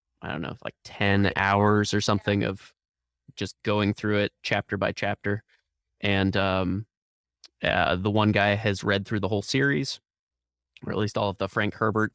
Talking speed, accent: 180 wpm, American